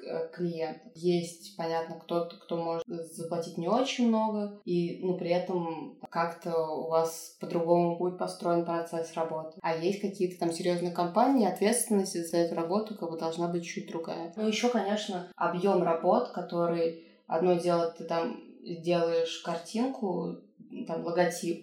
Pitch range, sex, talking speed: 170-210 Hz, female, 140 wpm